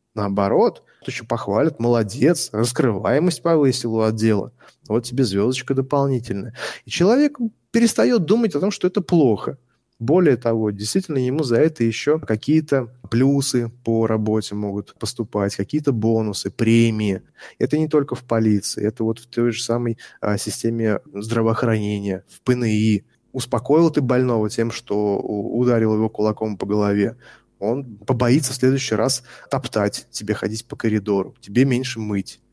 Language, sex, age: Russian, male, 20-39